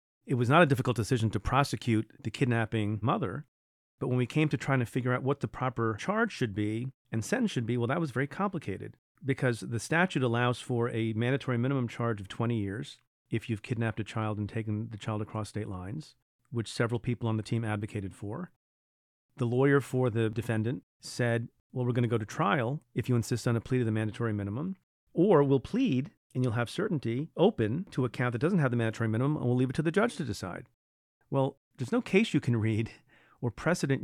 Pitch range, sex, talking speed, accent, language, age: 115-140 Hz, male, 220 wpm, American, English, 40-59